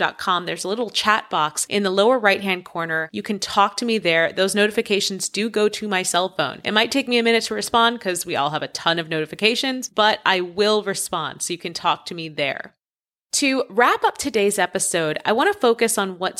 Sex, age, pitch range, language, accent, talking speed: female, 30-49, 180-235 Hz, English, American, 240 wpm